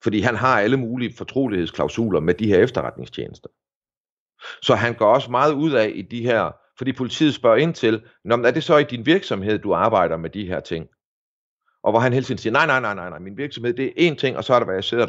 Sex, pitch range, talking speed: male, 90-125 Hz, 245 wpm